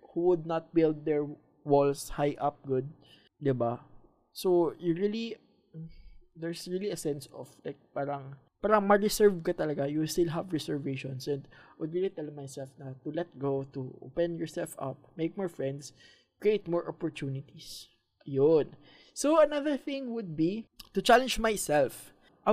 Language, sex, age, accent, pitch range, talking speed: Filipino, male, 20-39, native, 140-205 Hz, 155 wpm